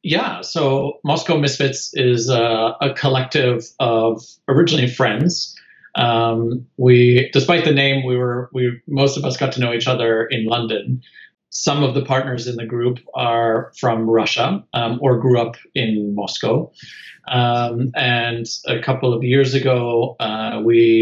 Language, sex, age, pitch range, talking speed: English, male, 40-59, 115-135 Hz, 155 wpm